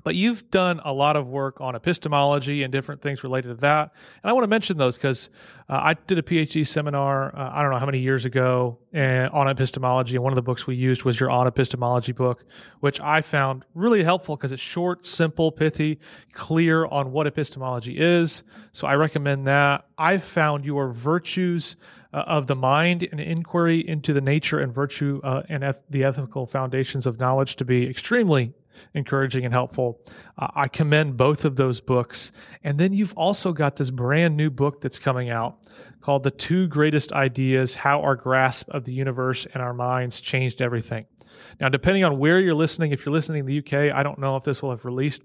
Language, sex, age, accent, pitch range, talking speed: English, male, 30-49, American, 130-155 Hz, 200 wpm